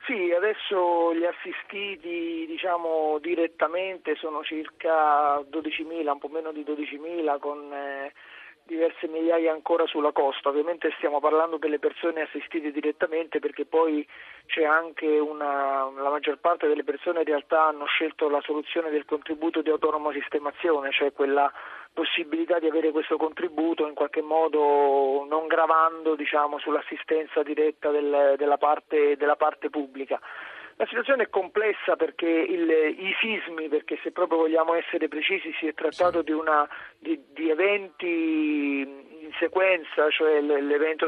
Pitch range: 150-170 Hz